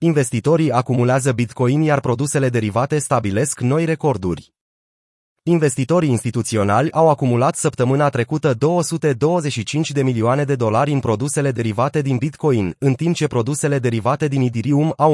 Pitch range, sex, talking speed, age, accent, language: 120-150 Hz, male, 130 wpm, 30-49, native, Romanian